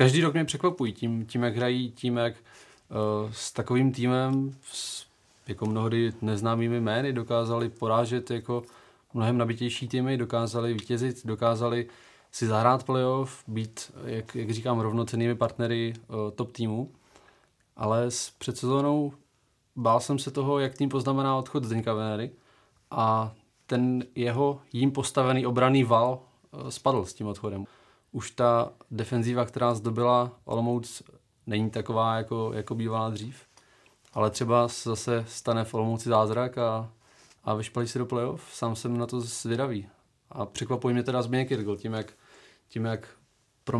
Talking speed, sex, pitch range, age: 140 wpm, male, 110-125 Hz, 20-39